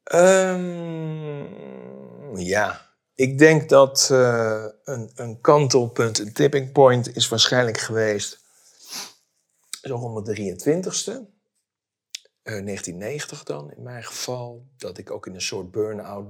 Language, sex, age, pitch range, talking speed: Dutch, male, 50-69, 100-125 Hz, 110 wpm